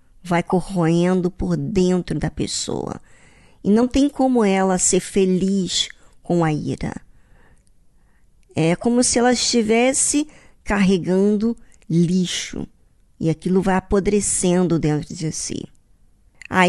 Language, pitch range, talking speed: Portuguese, 170-230 Hz, 110 wpm